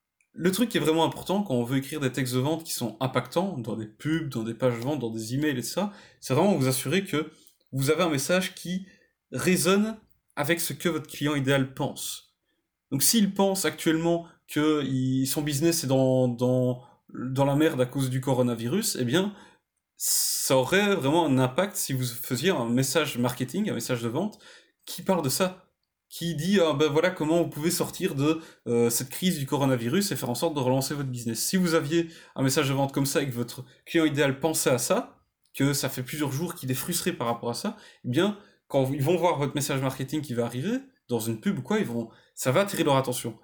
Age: 20-39